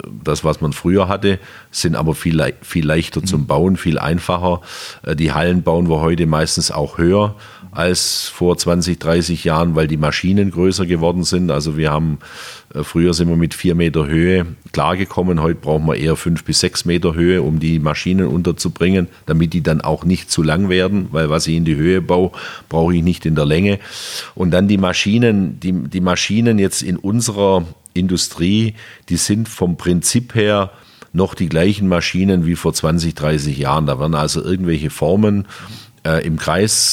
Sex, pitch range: male, 80-90 Hz